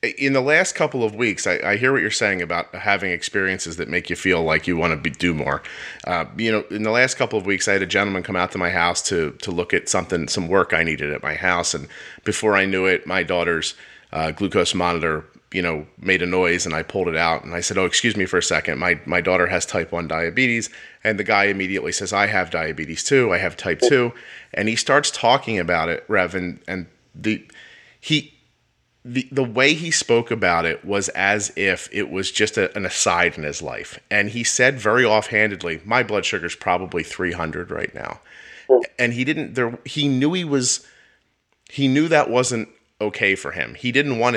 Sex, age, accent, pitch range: male, 30-49, American, 90-125 Hz